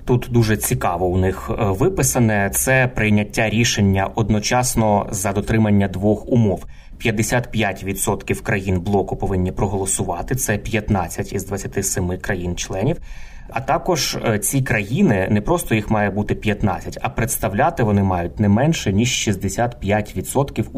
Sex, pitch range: male, 100-120 Hz